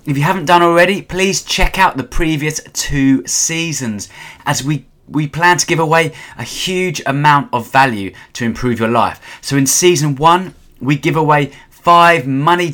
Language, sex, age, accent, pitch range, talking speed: English, male, 20-39, British, 130-165 Hz, 175 wpm